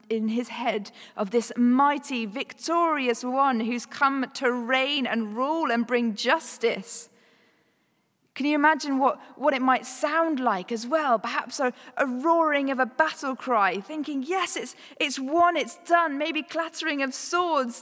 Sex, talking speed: female, 160 wpm